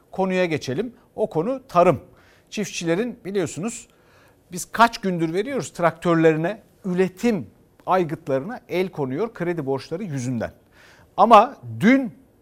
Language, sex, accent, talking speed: Turkish, male, native, 100 wpm